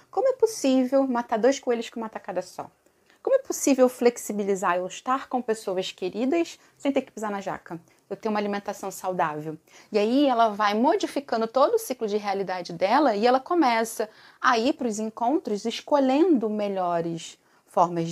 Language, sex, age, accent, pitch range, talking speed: Portuguese, female, 30-49, Brazilian, 190-260 Hz, 170 wpm